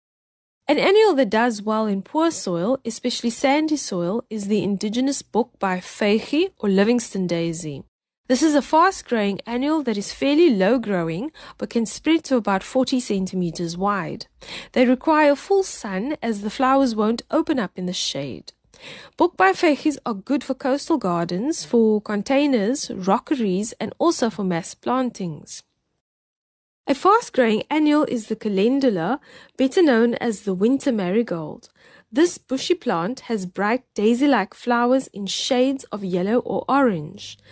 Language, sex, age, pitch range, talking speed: English, female, 30-49, 200-275 Hz, 150 wpm